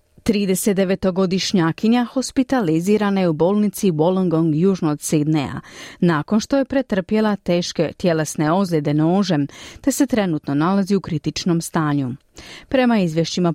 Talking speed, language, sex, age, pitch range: 120 wpm, Croatian, female, 40-59, 160-215 Hz